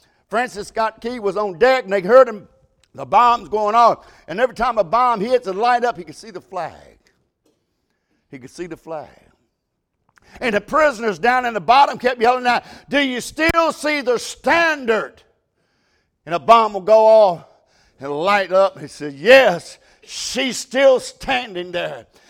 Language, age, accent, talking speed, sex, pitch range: English, 60-79, American, 180 wpm, male, 230-295 Hz